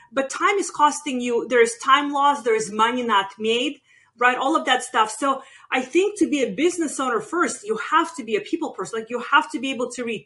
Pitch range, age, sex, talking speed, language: 235-310 Hz, 30-49, female, 240 wpm, English